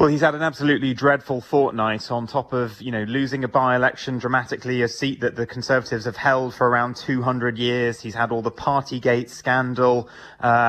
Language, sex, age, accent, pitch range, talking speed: English, male, 30-49, British, 115-130 Hz, 190 wpm